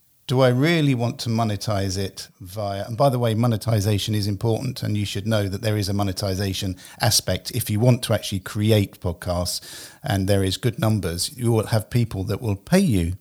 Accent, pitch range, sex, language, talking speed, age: British, 100-130 Hz, male, English, 205 wpm, 50-69